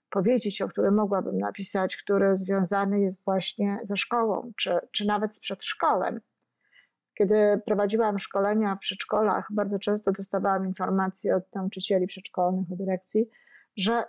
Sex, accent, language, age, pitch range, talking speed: female, native, Polish, 50-69, 200-240 Hz, 130 wpm